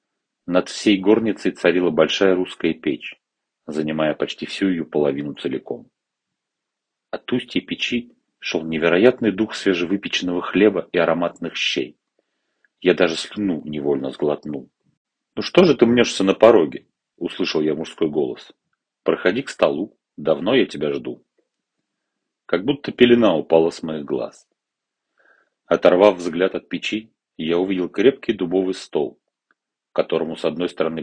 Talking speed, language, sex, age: 130 wpm, Russian, male, 40-59